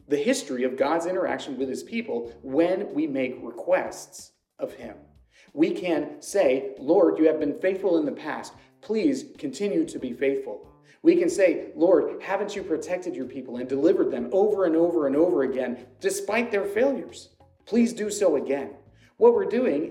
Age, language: 40-59, English